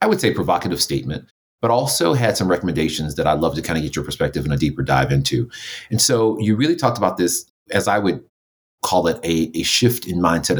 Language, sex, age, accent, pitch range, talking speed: English, male, 30-49, American, 80-100 Hz, 230 wpm